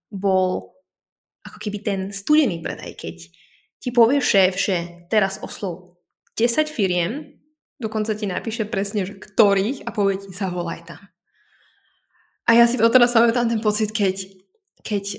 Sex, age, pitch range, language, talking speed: female, 20-39, 185-215 Hz, Slovak, 145 wpm